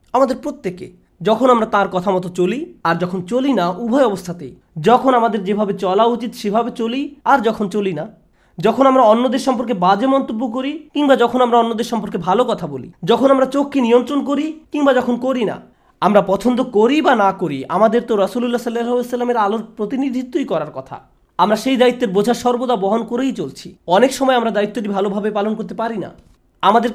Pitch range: 195-245 Hz